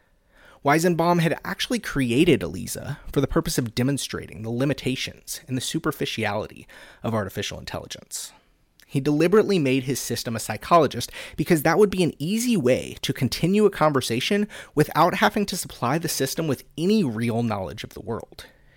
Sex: male